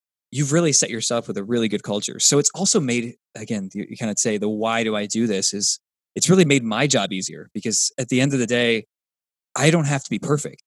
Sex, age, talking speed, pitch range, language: male, 20-39, 255 wpm, 100-130 Hz, English